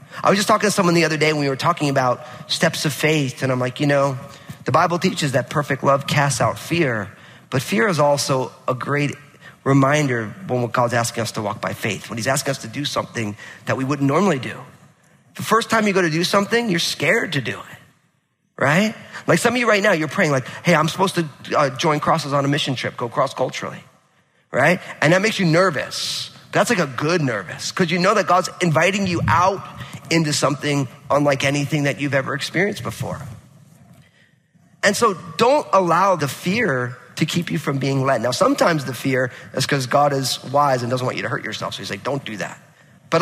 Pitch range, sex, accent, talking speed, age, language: 135-170 Hz, male, American, 215 wpm, 30-49, English